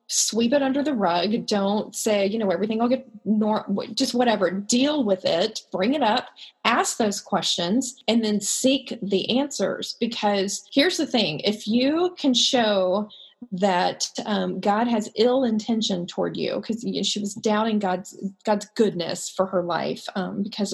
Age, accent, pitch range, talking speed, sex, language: 30-49, American, 190-235 Hz, 165 wpm, female, English